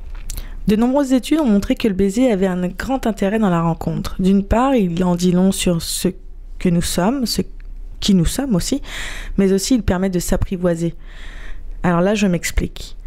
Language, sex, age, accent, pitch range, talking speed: French, female, 20-39, French, 180-225 Hz, 190 wpm